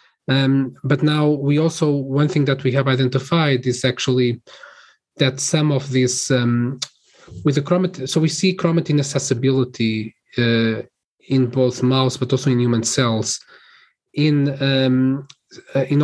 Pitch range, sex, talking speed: 120-145 Hz, male, 140 wpm